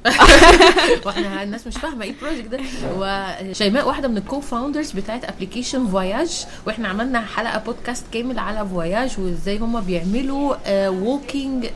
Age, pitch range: 20-39, 190-245 Hz